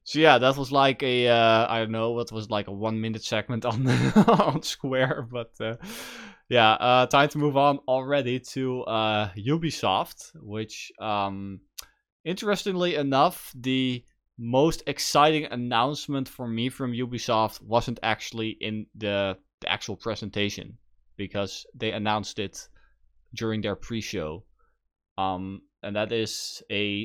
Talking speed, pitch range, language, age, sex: 140 wpm, 105-130 Hz, English, 20-39, male